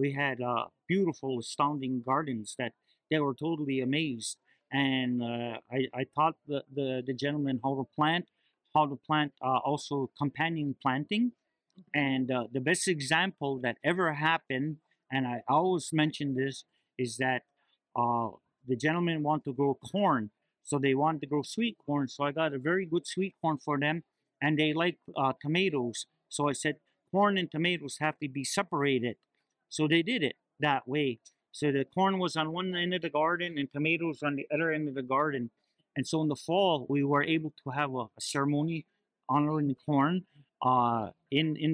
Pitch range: 135-160 Hz